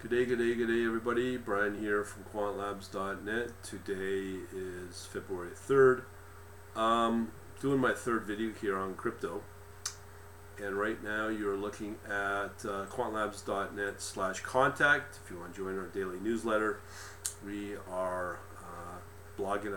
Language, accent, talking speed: English, American, 135 wpm